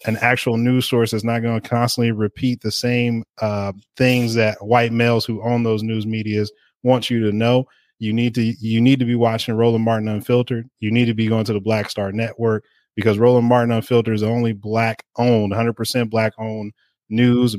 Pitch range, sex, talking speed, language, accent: 105-120 Hz, male, 210 wpm, English, American